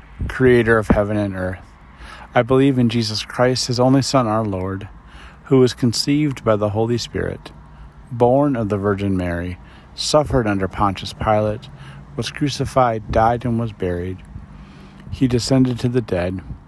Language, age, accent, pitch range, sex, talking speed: English, 40-59, American, 85-130 Hz, male, 150 wpm